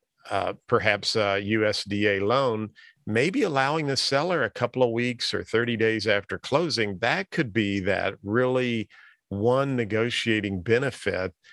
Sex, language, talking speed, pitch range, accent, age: male, English, 130 wpm, 100-125 Hz, American, 50-69